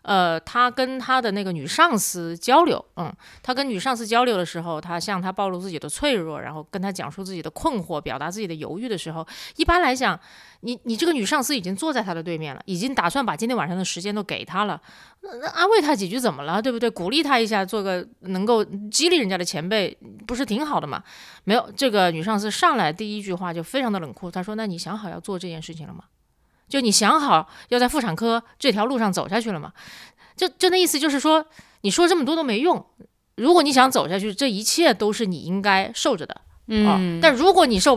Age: 30-49